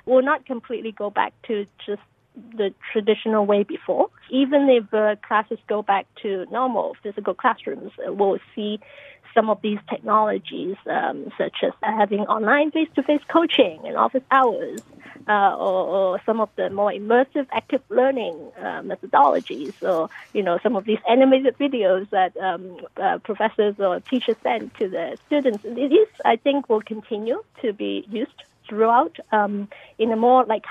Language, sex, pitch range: Korean, female, 210-260 Hz